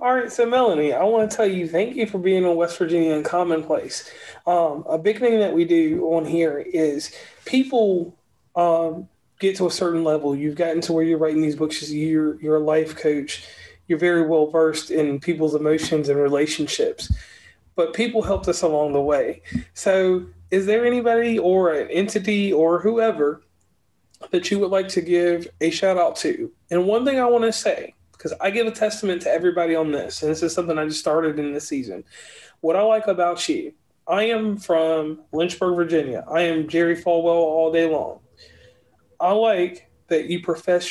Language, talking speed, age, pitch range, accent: English, 190 wpm, 30-49, 160-200 Hz, American